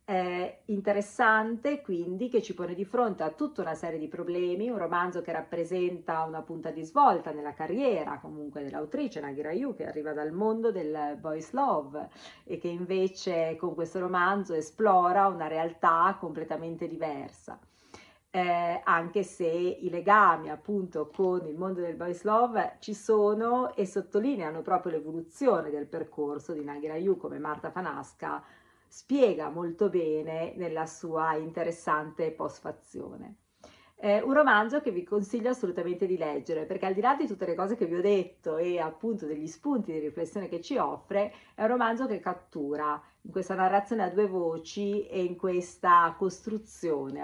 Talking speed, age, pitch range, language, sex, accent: 160 wpm, 40-59, 160-205 Hz, Italian, female, native